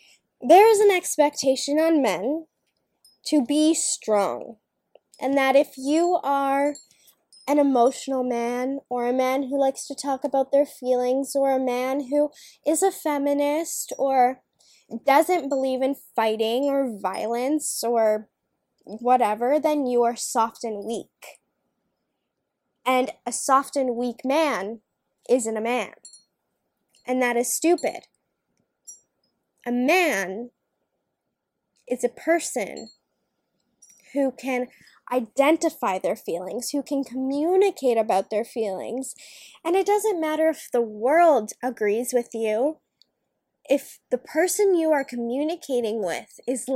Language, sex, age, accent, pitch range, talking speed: English, female, 10-29, American, 245-300 Hz, 125 wpm